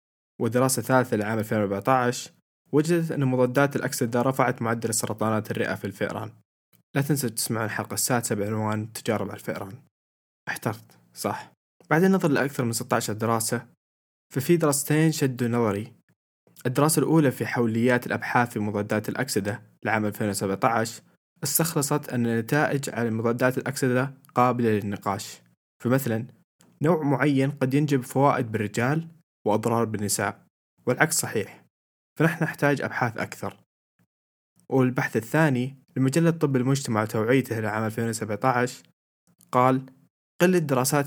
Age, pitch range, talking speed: 20-39, 110-135 Hz, 115 wpm